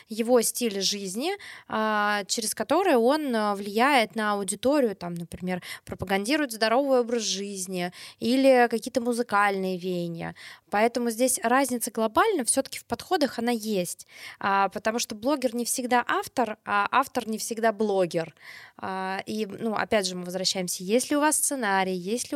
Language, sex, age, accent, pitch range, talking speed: Russian, female, 20-39, native, 200-250 Hz, 140 wpm